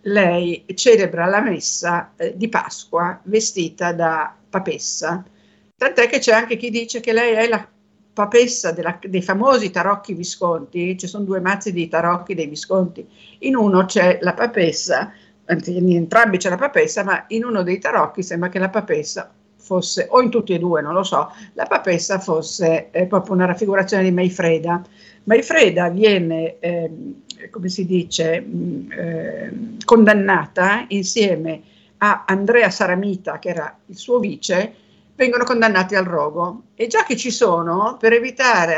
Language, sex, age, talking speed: Italian, female, 50-69, 150 wpm